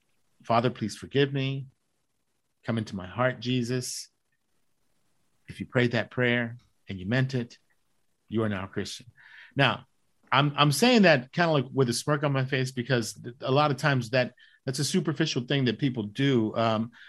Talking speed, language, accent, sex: 180 wpm, English, American, male